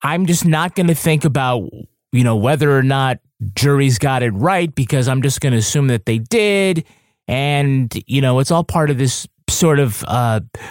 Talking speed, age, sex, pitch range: 200 wpm, 30-49, male, 125-165 Hz